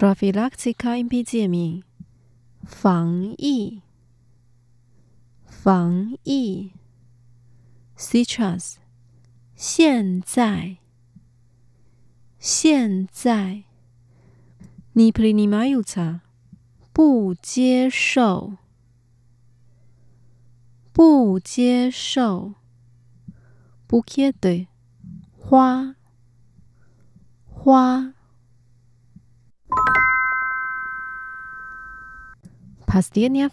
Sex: female